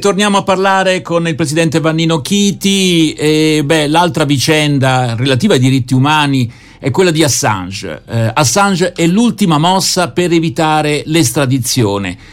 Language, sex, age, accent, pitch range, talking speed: Italian, male, 60-79, native, 130-165 Hz, 135 wpm